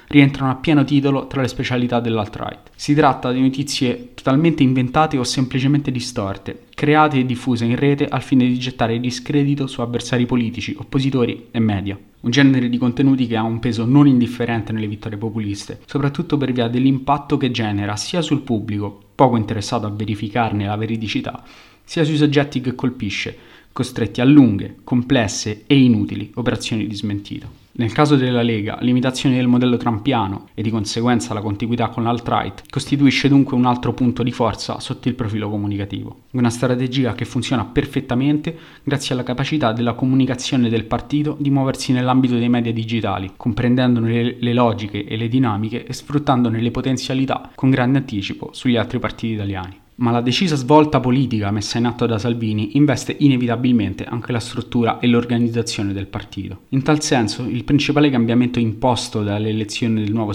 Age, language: 20-39, Italian